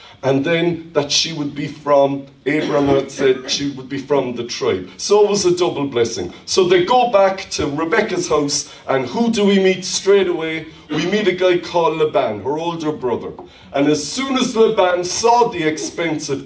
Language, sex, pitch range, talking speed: English, male, 140-185 Hz, 195 wpm